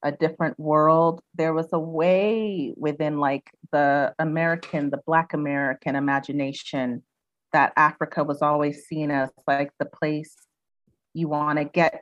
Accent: American